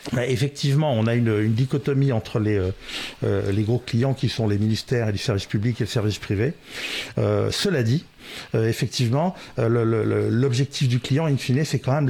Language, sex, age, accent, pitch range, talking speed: French, male, 50-69, French, 115-145 Hz, 205 wpm